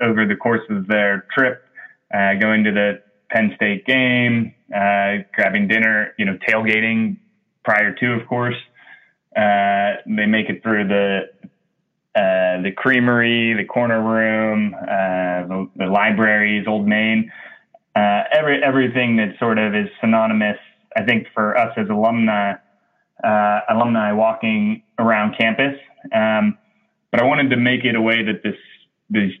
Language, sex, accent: English, male, American